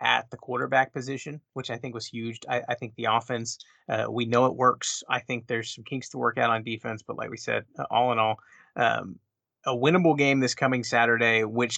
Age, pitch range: 30-49, 115-140 Hz